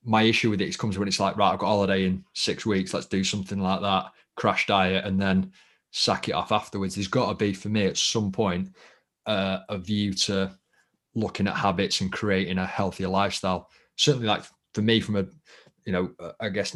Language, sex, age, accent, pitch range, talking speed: English, male, 20-39, British, 95-105 Hz, 215 wpm